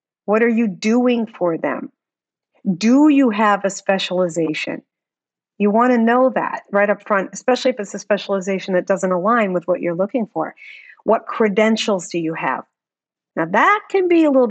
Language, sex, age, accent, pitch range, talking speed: English, female, 50-69, American, 190-235 Hz, 180 wpm